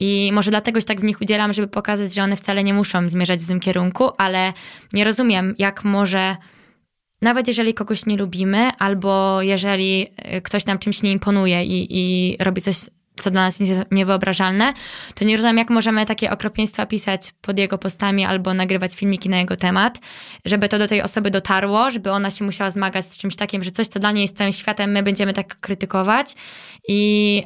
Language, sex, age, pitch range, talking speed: Polish, female, 20-39, 190-215 Hz, 190 wpm